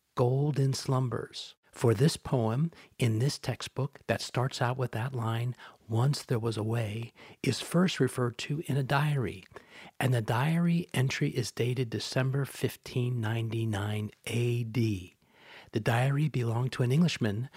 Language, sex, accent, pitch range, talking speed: English, male, American, 110-135 Hz, 150 wpm